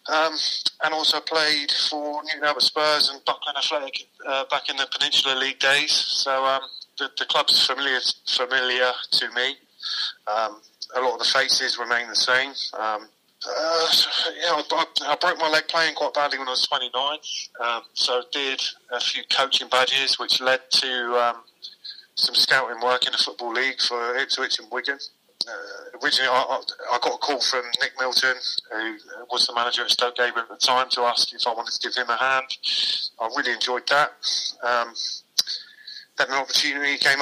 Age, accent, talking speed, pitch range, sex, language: 30-49, British, 185 wpm, 125-150 Hz, male, English